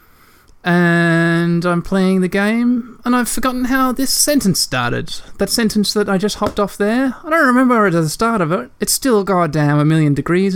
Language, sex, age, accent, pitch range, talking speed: English, male, 20-39, Australian, 145-200 Hz, 200 wpm